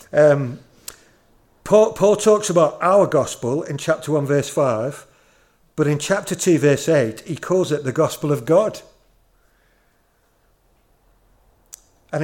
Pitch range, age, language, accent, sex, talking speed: 145-190 Hz, 50-69, English, British, male, 125 wpm